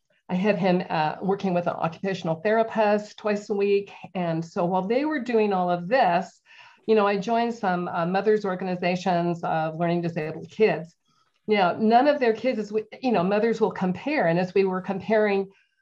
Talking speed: 180 wpm